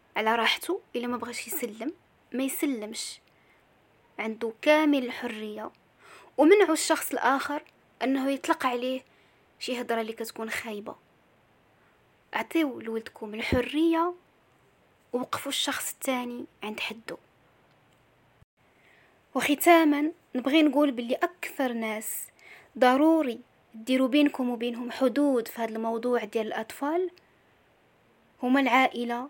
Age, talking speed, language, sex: 20-39, 100 wpm, Arabic, female